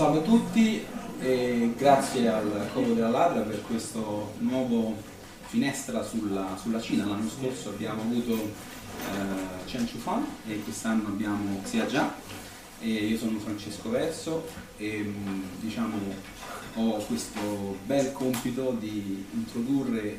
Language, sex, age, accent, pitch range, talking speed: Italian, male, 30-49, native, 105-130 Hz, 120 wpm